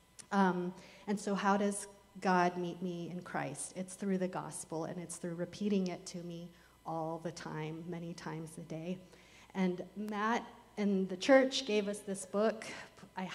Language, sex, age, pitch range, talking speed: English, female, 30-49, 175-200 Hz, 170 wpm